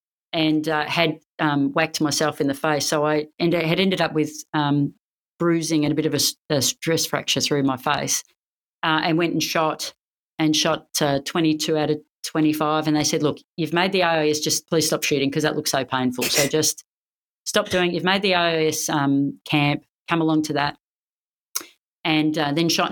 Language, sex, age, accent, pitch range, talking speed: English, female, 30-49, Australian, 150-170 Hz, 200 wpm